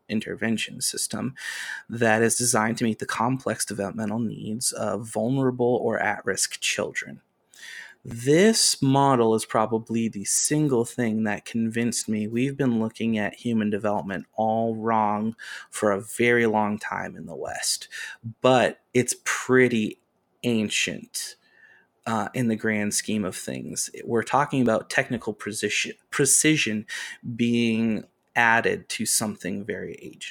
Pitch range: 110-125 Hz